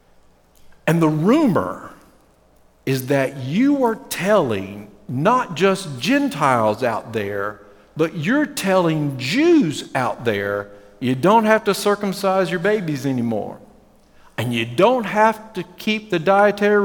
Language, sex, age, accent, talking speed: English, male, 50-69, American, 125 wpm